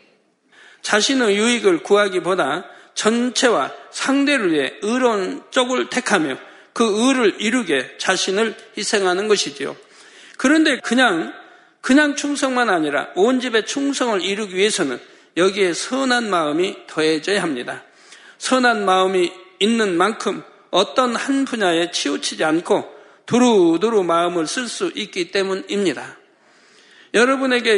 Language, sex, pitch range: Korean, male, 185-245 Hz